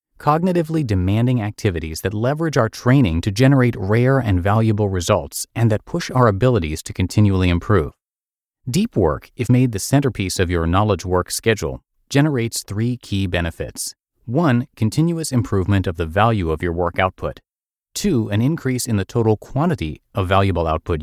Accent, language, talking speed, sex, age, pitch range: American, English, 160 wpm, male, 30-49, 90-125 Hz